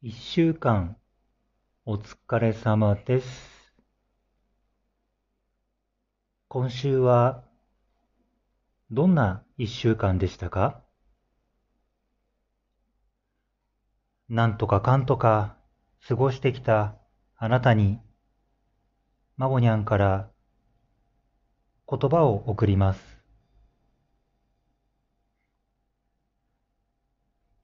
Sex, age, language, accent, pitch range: male, 40-59, Japanese, native, 105-135 Hz